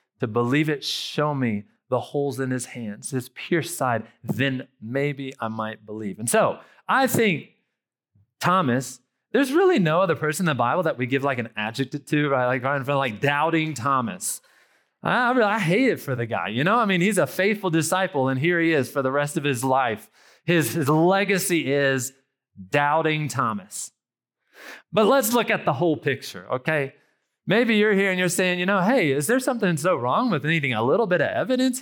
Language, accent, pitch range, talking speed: English, American, 135-190 Hz, 205 wpm